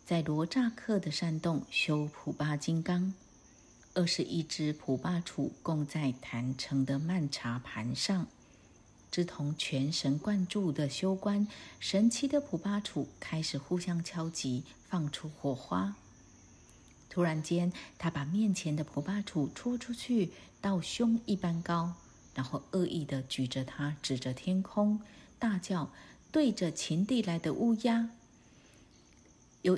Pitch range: 145-195 Hz